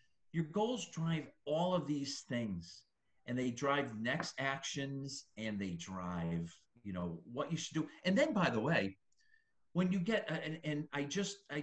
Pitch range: 110-165 Hz